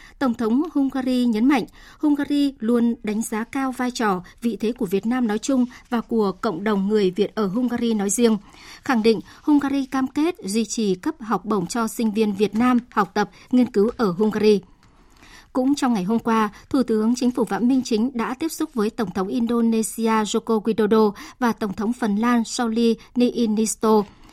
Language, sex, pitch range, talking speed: Vietnamese, male, 215-250 Hz, 190 wpm